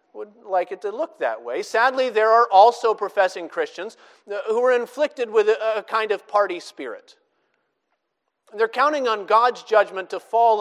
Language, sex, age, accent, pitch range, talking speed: English, male, 40-59, American, 185-260 Hz, 165 wpm